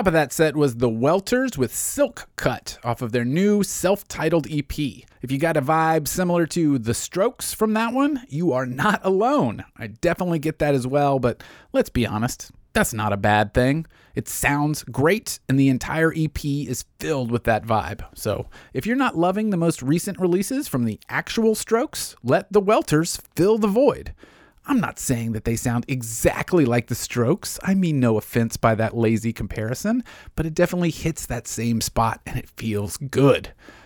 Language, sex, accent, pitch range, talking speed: English, male, American, 120-175 Hz, 190 wpm